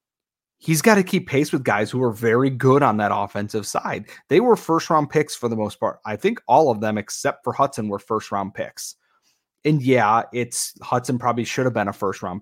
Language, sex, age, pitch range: English, male, 30-49, 110-140 Hz